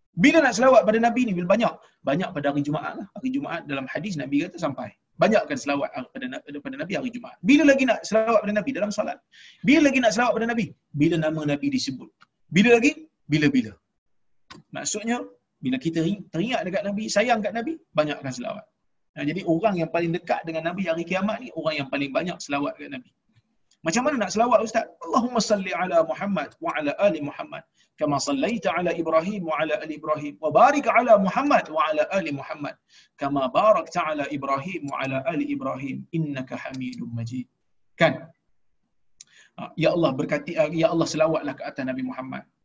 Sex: male